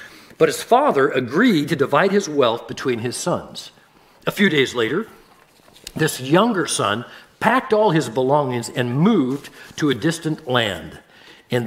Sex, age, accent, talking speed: male, 60-79, American, 150 wpm